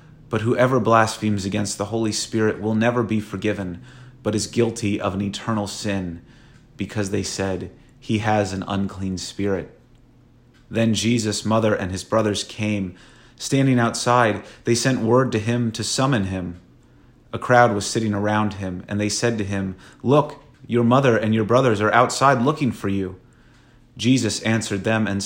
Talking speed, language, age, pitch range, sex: 165 wpm, English, 30-49, 100-120 Hz, male